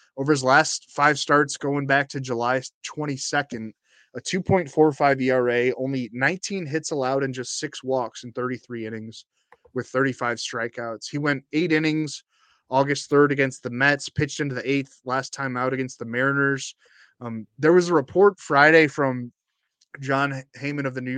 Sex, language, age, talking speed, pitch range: male, English, 20-39, 165 wpm, 125-140 Hz